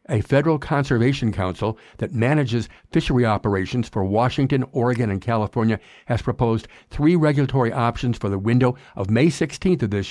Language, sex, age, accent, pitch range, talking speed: English, male, 60-79, American, 105-130 Hz, 155 wpm